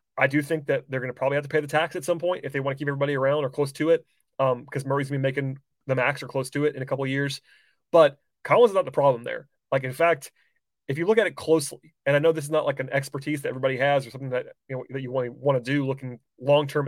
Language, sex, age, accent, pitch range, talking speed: English, male, 30-49, American, 130-155 Hz, 295 wpm